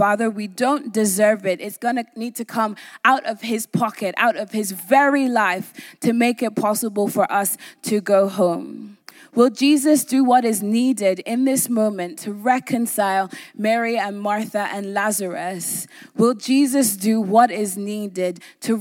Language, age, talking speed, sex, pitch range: English, 20-39, 165 wpm, female, 195-235 Hz